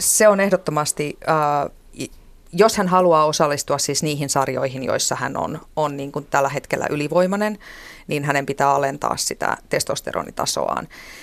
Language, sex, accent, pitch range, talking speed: Finnish, female, native, 145-180 Hz, 140 wpm